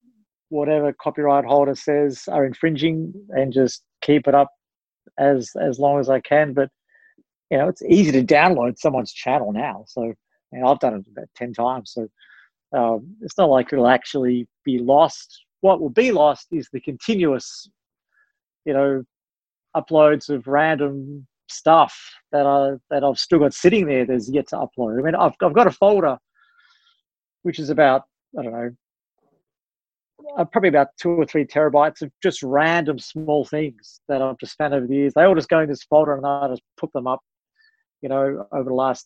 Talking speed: 180 wpm